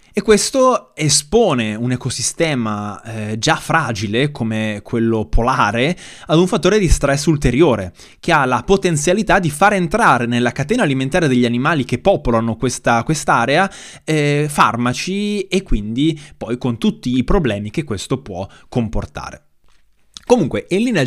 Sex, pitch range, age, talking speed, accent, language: male, 115-165 Hz, 20-39, 135 wpm, native, Italian